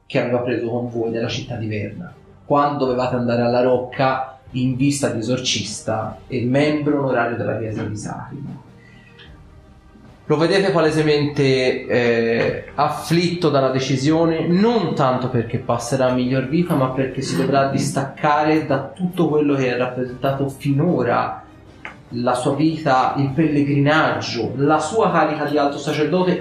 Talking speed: 140 wpm